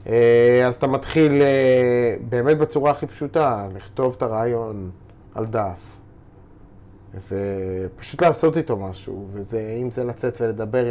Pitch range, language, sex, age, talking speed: 105-135 Hz, Hebrew, male, 20-39, 110 wpm